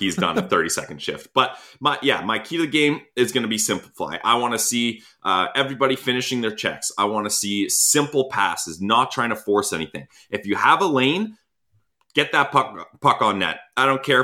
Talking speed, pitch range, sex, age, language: 220 wpm, 95-130 Hz, male, 30-49, English